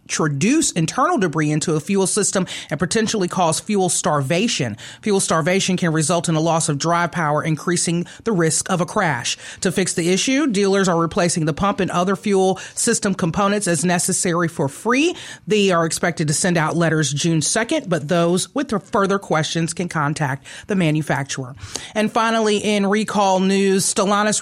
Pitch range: 165-200 Hz